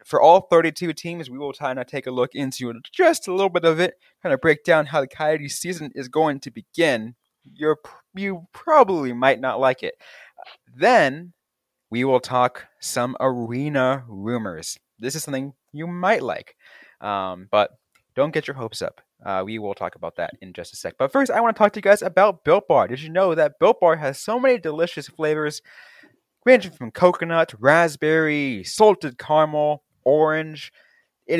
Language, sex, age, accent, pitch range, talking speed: English, male, 20-39, American, 115-165 Hz, 185 wpm